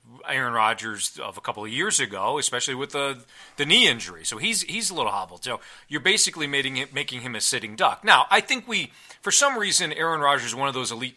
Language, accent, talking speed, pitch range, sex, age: English, American, 230 wpm, 115-150 Hz, male, 40-59